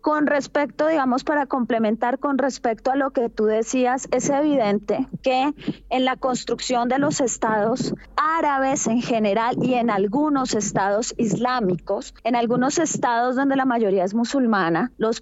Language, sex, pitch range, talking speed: Spanish, female, 225-275 Hz, 150 wpm